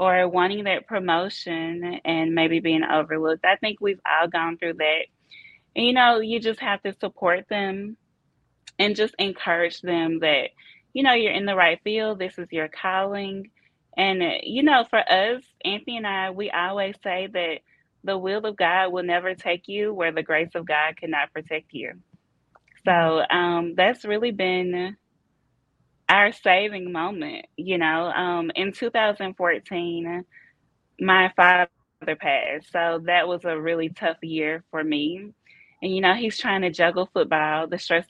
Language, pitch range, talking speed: English, 165-205 Hz, 160 wpm